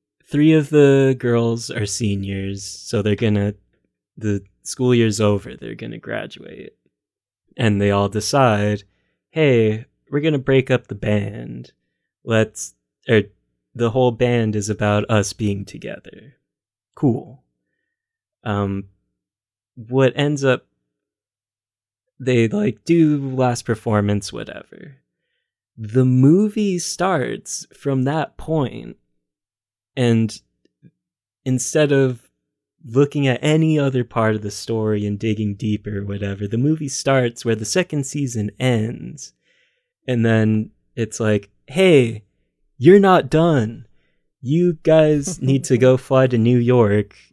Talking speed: 120 wpm